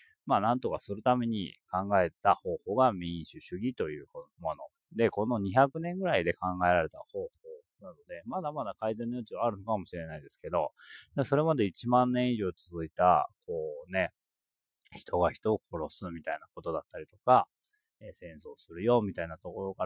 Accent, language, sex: native, Japanese, male